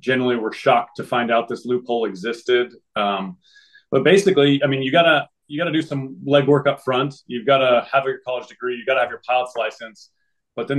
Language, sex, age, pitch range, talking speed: English, male, 30-49, 115-140 Hz, 220 wpm